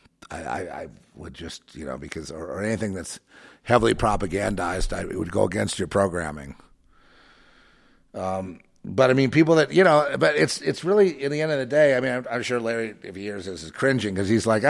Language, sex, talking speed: English, male, 215 wpm